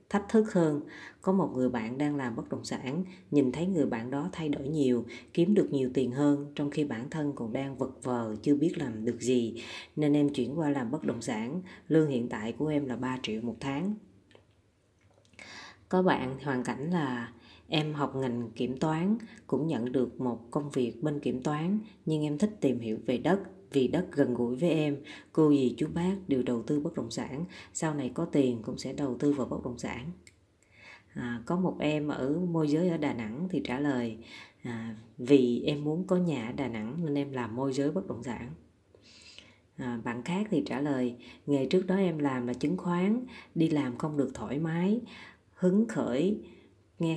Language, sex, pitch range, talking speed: Vietnamese, female, 125-165 Hz, 205 wpm